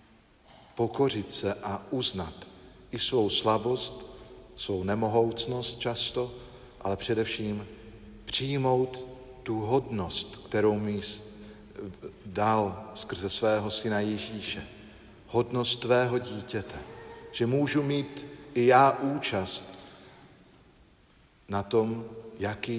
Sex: male